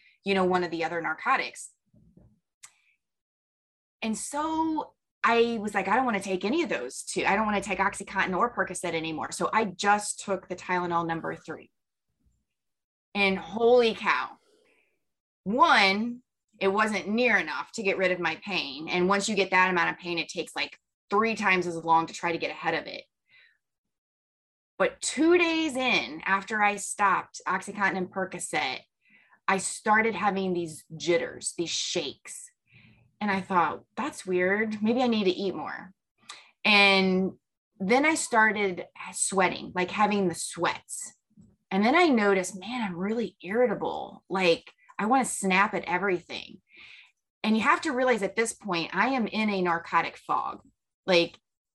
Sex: female